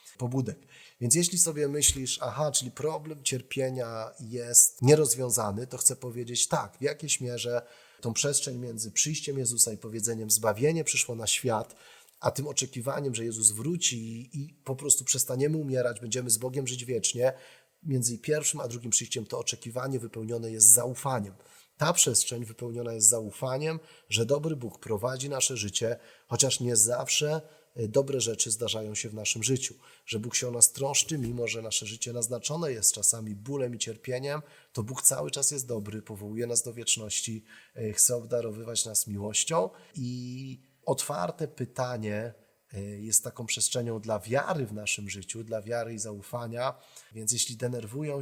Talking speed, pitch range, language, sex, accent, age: 155 wpm, 115-135 Hz, Polish, male, native, 30-49